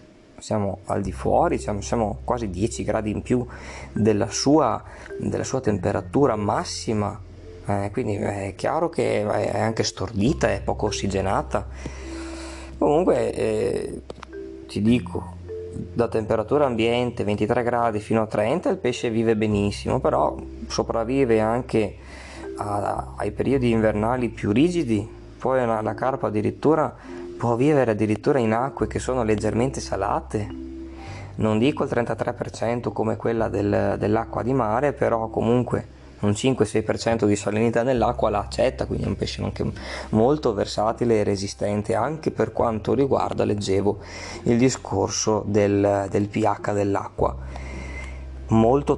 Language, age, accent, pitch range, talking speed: Italian, 20-39, native, 95-115 Hz, 130 wpm